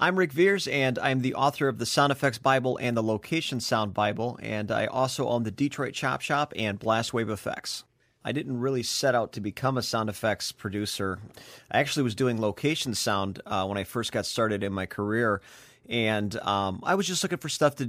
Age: 30-49